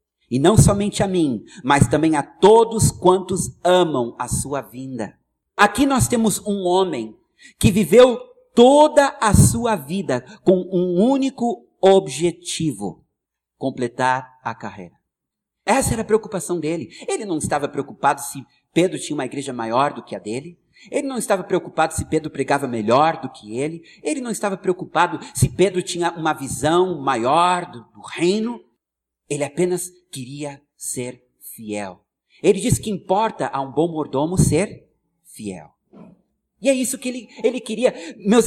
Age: 50-69